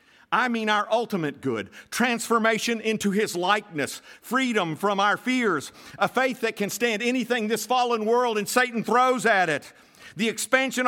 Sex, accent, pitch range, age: male, American, 170-225 Hz, 50-69